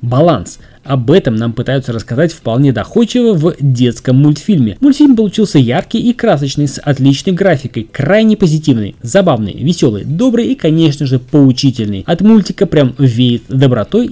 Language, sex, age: Russian, male, 20-39